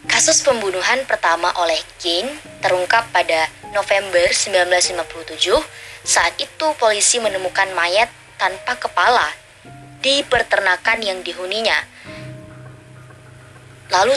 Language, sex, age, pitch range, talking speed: Indonesian, male, 20-39, 165-210 Hz, 90 wpm